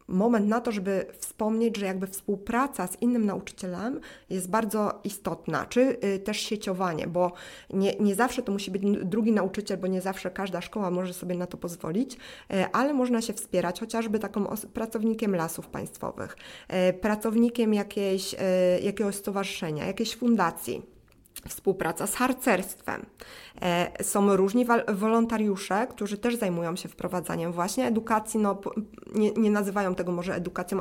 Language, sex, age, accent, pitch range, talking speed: Polish, female, 20-39, native, 185-230 Hz, 140 wpm